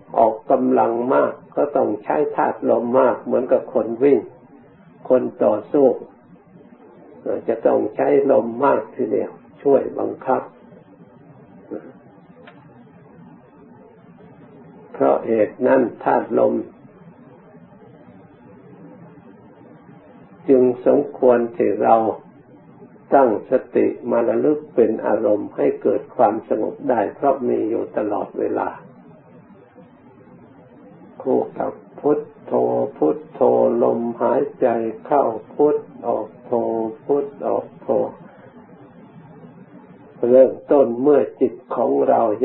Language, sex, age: Thai, male, 60-79